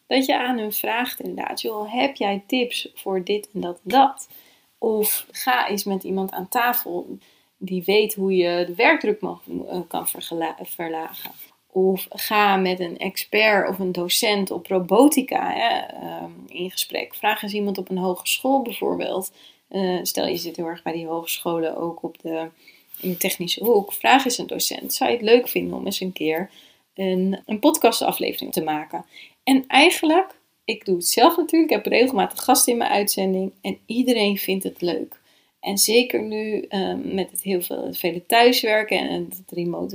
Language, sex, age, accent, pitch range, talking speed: Dutch, female, 30-49, Dutch, 175-220 Hz, 175 wpm